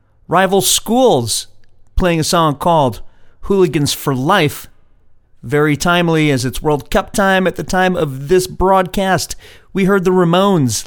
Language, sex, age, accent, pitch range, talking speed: English, male, 40-59, American, 130-180 Hz, 145 wpm